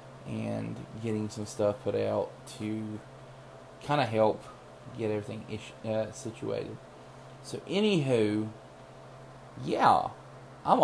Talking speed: 105 wpm